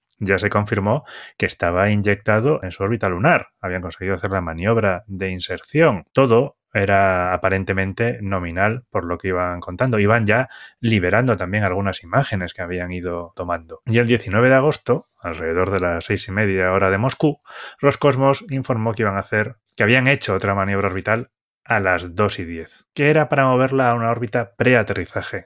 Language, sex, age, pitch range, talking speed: Spanish, male, 20-39, 95-120 Hz, 180 wpm